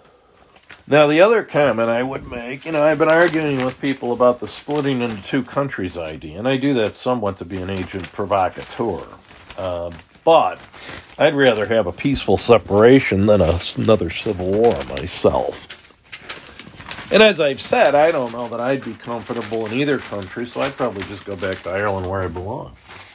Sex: male